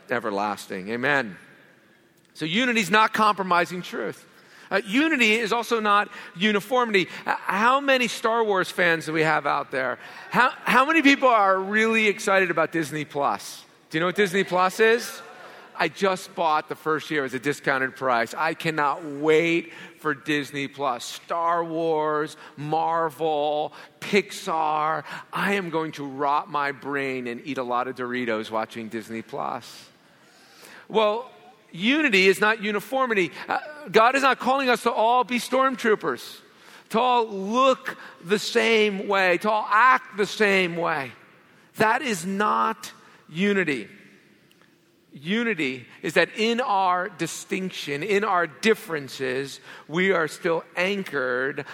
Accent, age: American, 40-59